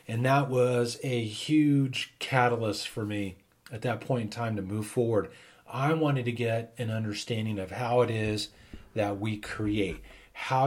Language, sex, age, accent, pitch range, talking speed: English, male, 40-59, American, 105-130 Hz, 170 wpm